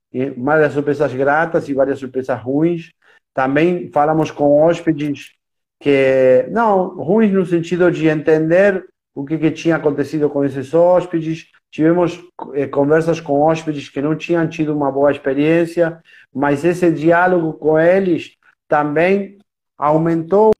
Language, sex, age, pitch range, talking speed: Portuguese, male, 50-69, 140-165 Hz, 135 wpm